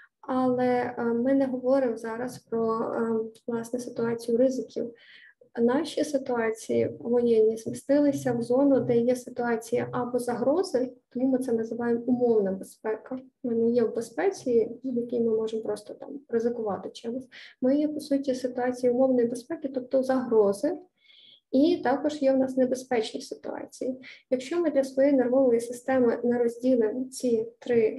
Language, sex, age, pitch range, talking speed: Ukrainian, female, 20-39, 235-275 Hz, 140 wpm